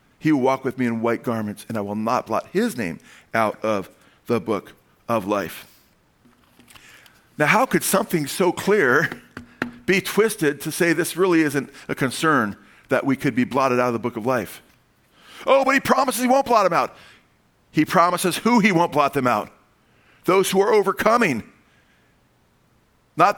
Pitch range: 135-195 Hz